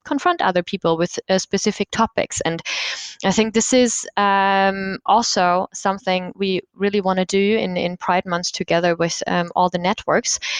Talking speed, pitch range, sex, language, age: 170 wpm, 185-225 Hz, female, English, 20-39